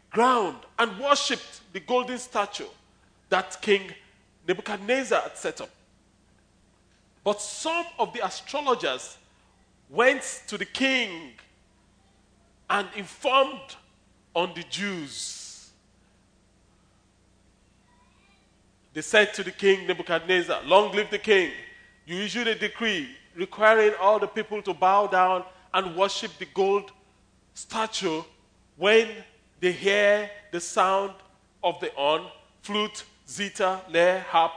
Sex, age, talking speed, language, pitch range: male, 40-59, 110 wpm, English, 145-230 Hz